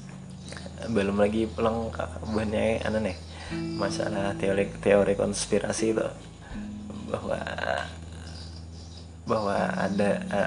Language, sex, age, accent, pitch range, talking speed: Indonesian, male, 20-39, native, 85-135 Hz, 80 wpm